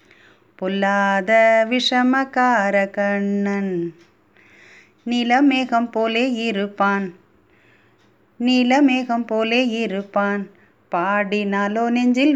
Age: 30-49